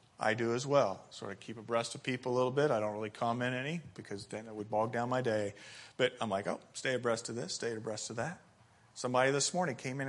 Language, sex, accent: English, male, American